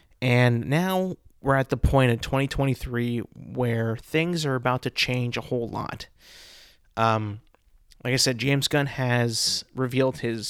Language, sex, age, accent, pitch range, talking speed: English, male, 30-49, American, 115-135 Hz, 150 wpm